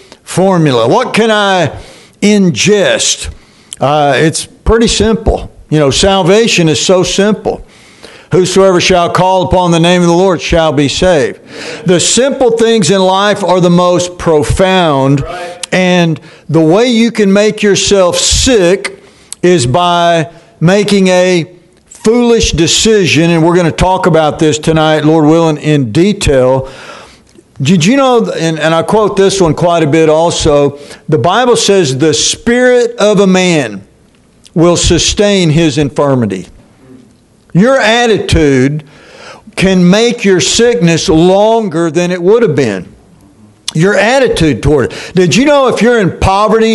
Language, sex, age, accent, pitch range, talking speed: English, male, 60-79, American, 160-200 Hz, 140 wpm